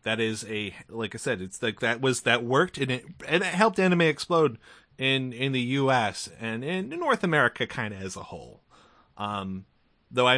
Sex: male